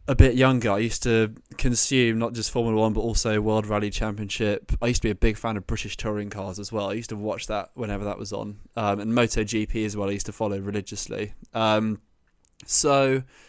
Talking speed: 225 wpm